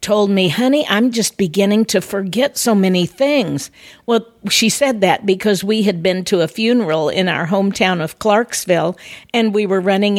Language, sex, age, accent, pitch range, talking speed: English, female, 50-69, American, 180-240 Hz, 185 wpm